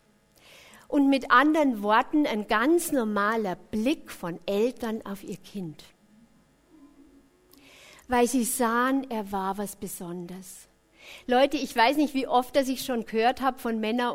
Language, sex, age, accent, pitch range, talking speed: English, female, 50-69, German, 195-255 Hz, 140 wpm